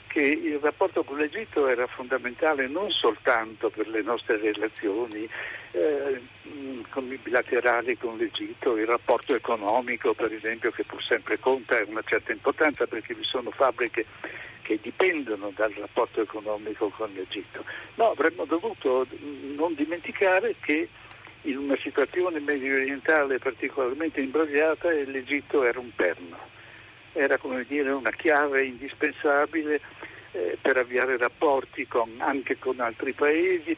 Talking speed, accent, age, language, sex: 130 wpm, native, 60-79, Italian, male